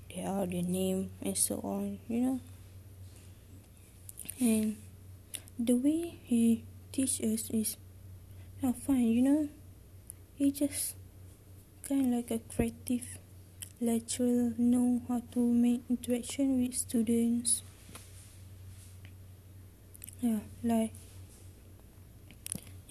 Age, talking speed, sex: 20-39, 90 wpm, female